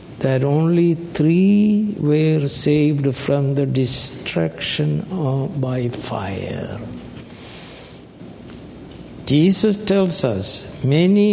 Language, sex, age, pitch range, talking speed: English, male, 60-79, 130-165 Hz, 80 wpm